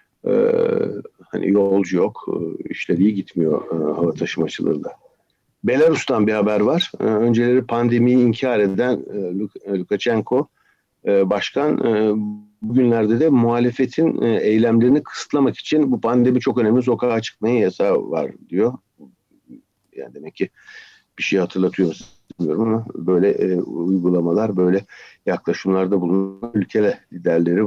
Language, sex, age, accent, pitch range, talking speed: Turkish, male, 60-79, native, 110-140 Hz, 100 wpm